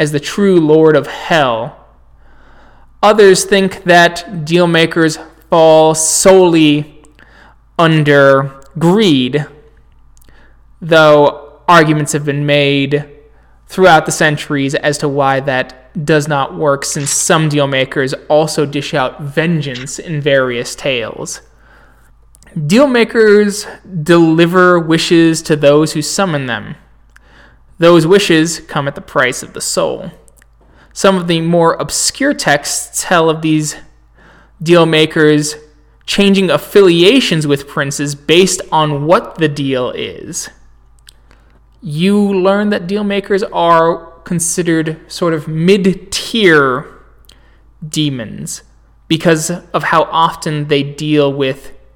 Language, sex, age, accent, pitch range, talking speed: English, male, 20-39, American, 145-175 Hz, 105 wpm